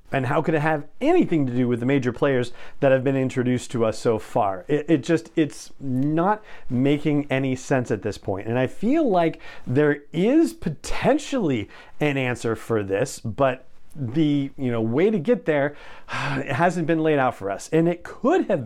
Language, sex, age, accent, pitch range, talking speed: English, male, 40-59, American, 115-155 Hz, 195 wpm